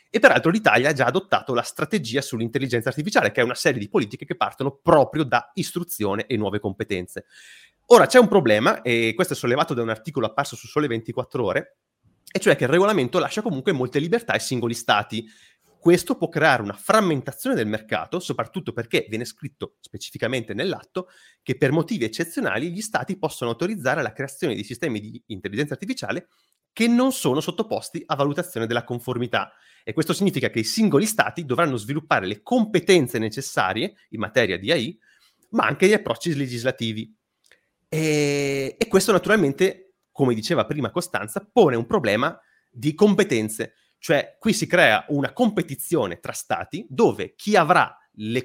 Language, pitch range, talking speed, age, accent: Italian, 120-180 Hz, 165 wpm, 30-49, native